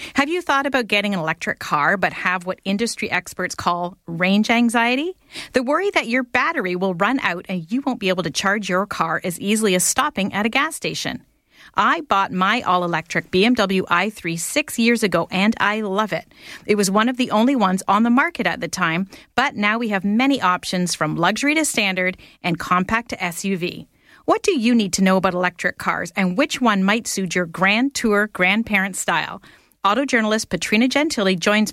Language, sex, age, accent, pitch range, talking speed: English, female, 40-59, American, 180-245 Hz, 200 wpm